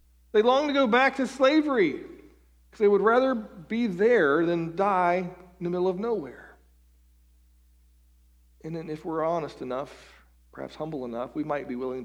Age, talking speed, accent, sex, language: 50-69, 165 wpm, American, male, English